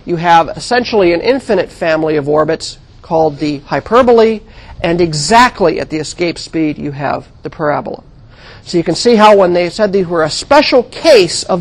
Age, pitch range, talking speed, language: 50-69, 155-230 Hz, 180 wpm, English